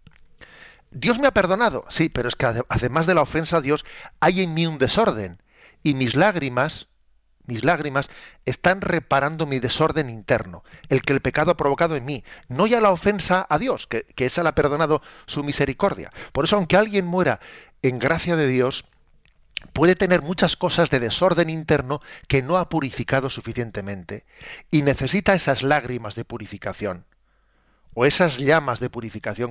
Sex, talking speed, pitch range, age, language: male, 165 wpm, 120-160 Hz, 40-59, Spanish